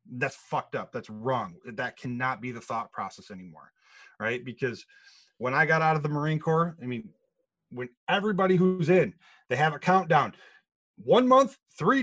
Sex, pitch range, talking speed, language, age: male, 130-185 Hz, 175 wpm, English, 30-49